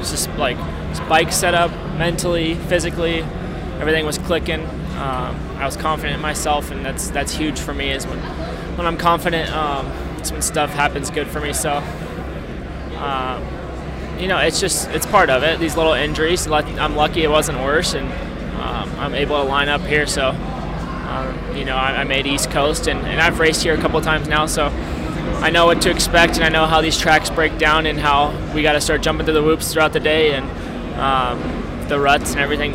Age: 20-39